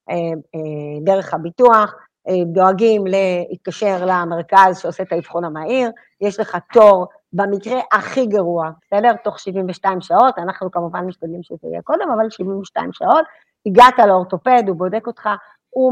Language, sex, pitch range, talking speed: Hebrew, female, 180-230 Hz, 130 wpm